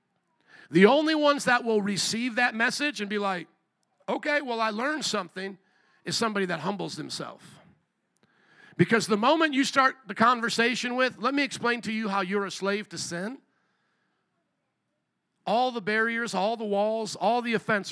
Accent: American